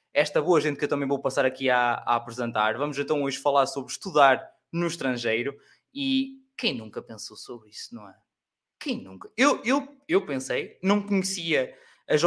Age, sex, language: 20-39, male, Portuguese